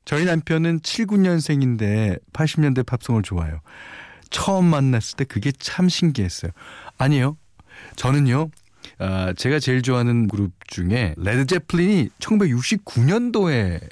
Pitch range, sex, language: 95-155 Hz, male, Korean